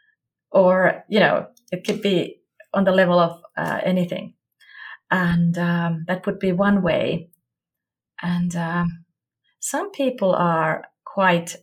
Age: 30-49